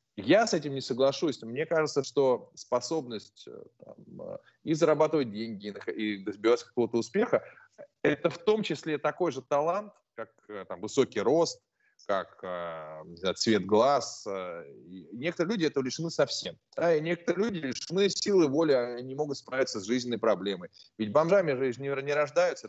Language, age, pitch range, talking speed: Russian, 20-39, 115-160 Hz, 150 wpm